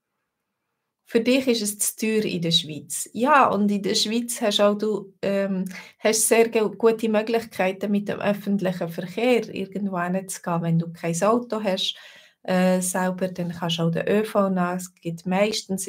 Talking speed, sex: 170 wpm, female